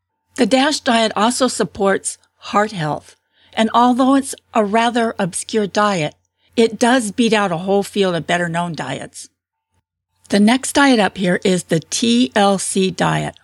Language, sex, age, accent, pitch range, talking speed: English, female, 50-69, American, 185-235 Hz, 145 wpm